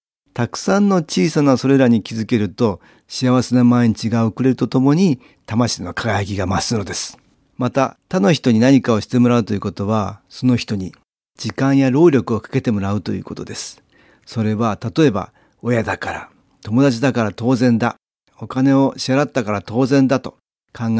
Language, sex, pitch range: Japanese, male, 105-135 Hz